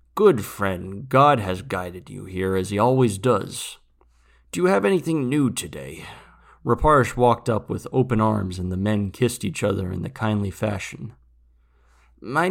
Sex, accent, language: male, American, English